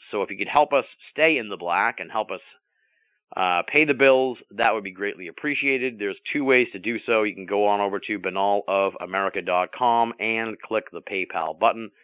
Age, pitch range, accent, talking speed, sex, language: 40-59, 95-120 Hz, American, 200 wpm, male, English